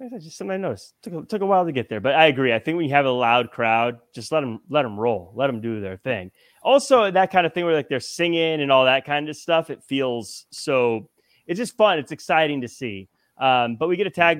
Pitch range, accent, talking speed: 125-165 Hz, American, 280 wpm